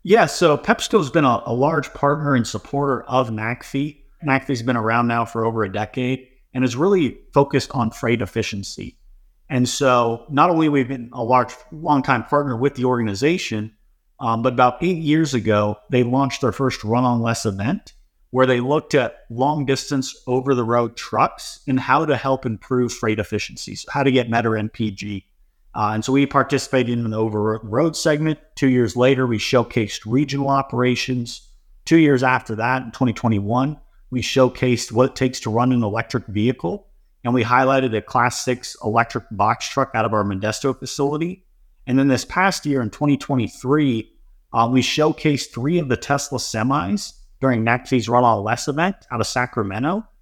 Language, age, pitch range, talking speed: English, 30-49, 115-140 Hz, 180 wpm